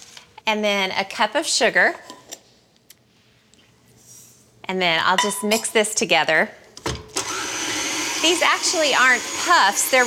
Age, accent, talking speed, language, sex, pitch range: 30-49, American, 105 wpm, English, female, 190-265 Hz